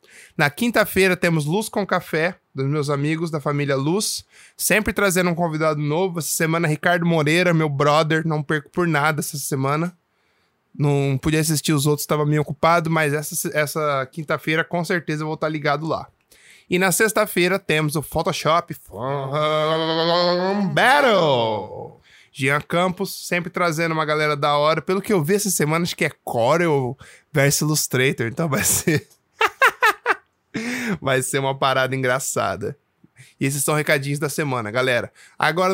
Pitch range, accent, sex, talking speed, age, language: 145-180 Hz, Brazilian, male, 155 wpm, 20-39, Portuguese